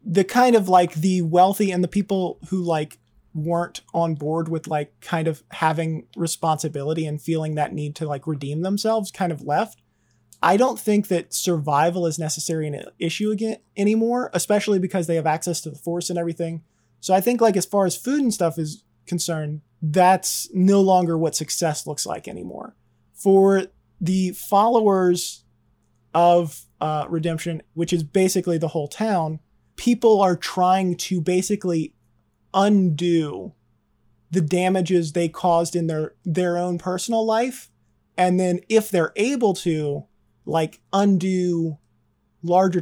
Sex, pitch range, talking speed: male, 160-190 Hz, 155 wpm